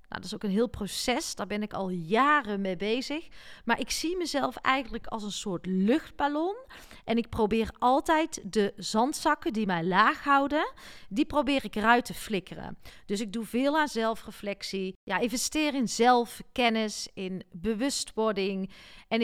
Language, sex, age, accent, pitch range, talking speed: Dutch, female, 40-59, Dutch, 205-260 Hz, 160 wpm